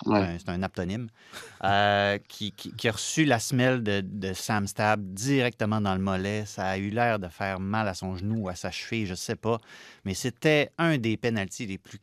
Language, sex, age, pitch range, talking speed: French, male, 30-49, 95-125 Hz, 220 wpm